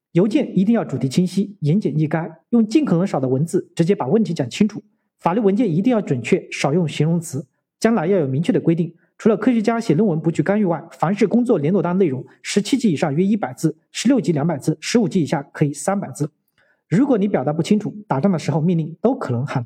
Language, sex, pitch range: Chinese, male, 155-210 Hz